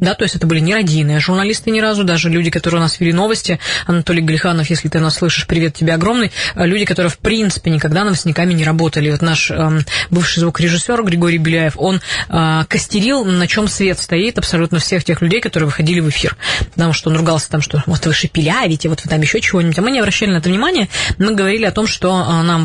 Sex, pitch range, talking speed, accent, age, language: female, 165-190 Hz, 220 wpm, native, 20-39, Russian